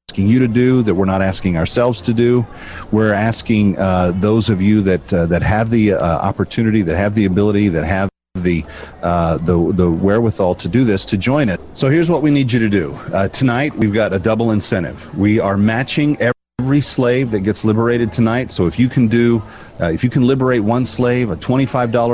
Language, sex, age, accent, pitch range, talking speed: English, male, 40-59, American, 95-120 Hz, 210 wpm